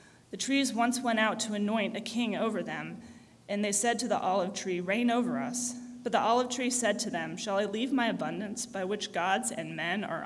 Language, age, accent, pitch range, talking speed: English, 30-49, American, 205-245 Hz, 230 wpm